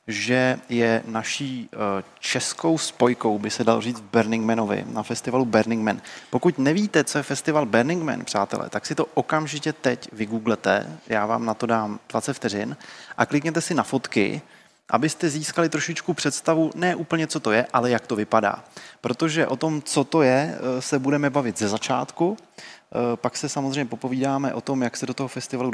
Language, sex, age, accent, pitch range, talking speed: Czech, male, 20-39, native, 115-145 Hz, 175 wpm